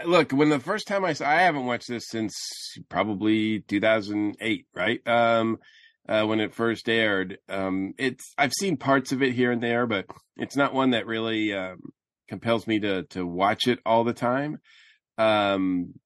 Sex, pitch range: male, 105-130 Hz